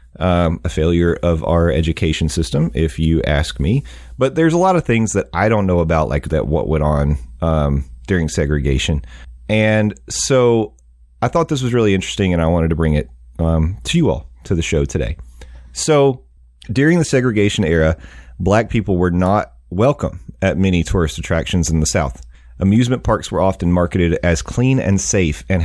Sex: male